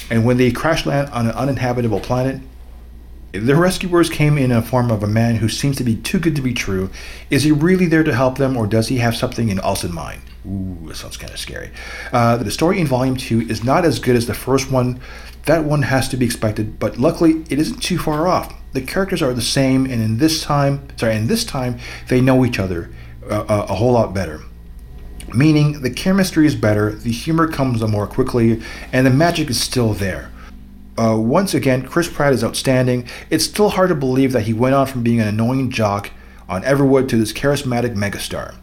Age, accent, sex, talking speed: 40-59, American, male, 215 wpm